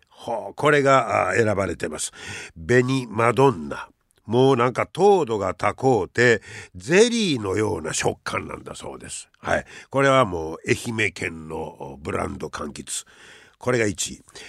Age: 60-79